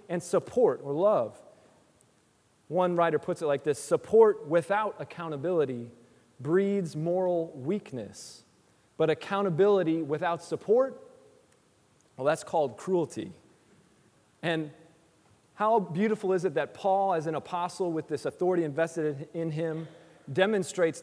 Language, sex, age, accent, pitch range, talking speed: English, male, 30-49, American, 150-185 Hz, 115 wpm